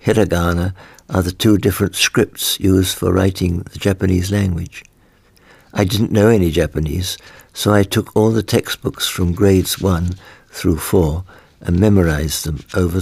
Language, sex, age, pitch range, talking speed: English, male, 60-79, 90-105 Hz, 145 wpm